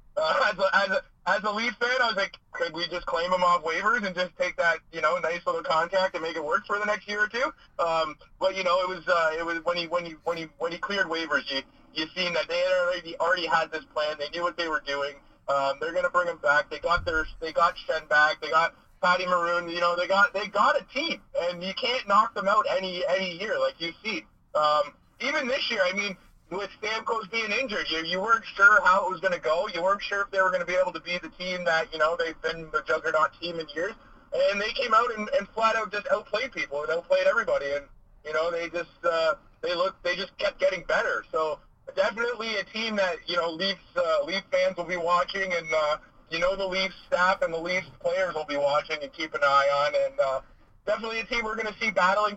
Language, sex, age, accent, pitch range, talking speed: English, male, 30-49, American, 165-210 Hz, 260 wpm